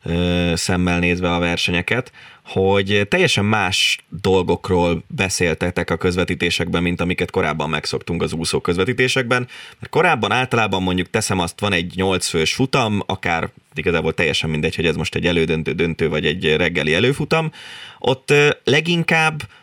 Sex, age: male, 20-39